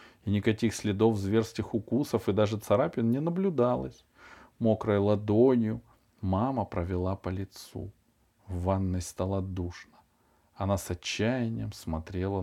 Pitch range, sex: 95-120 Hz, male